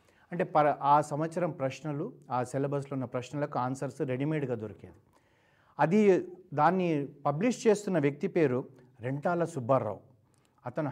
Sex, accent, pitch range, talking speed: male, native, 125-160 Hz, 110 wpm